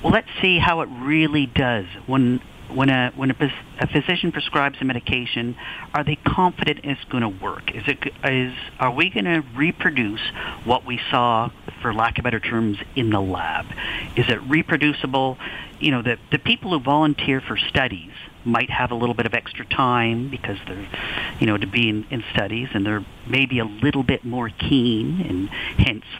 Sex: male